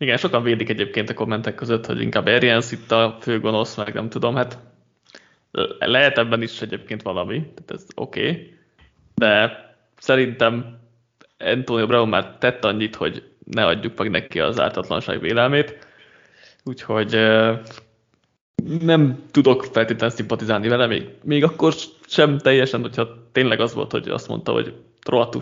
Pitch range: 115-145 Hz